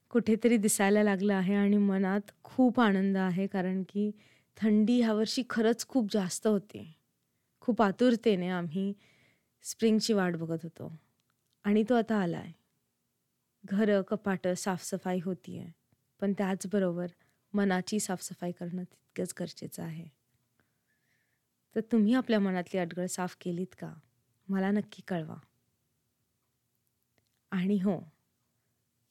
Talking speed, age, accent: 110 wpm, 20-39, native